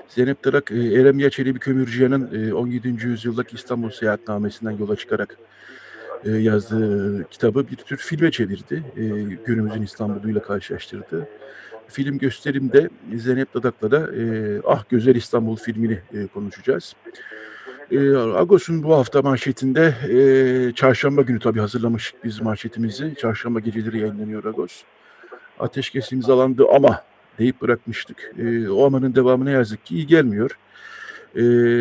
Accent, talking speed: native, 110 wpm